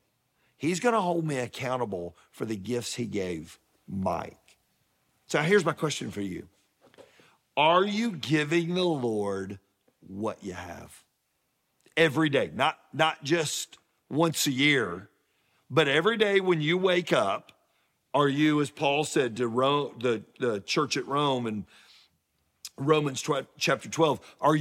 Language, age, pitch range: English, 50-69, 125-165 Hz